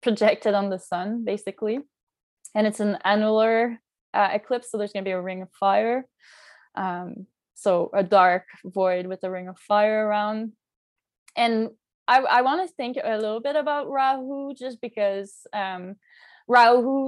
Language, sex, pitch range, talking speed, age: English, female, 195-235 Hz, 155 wpm, 20-39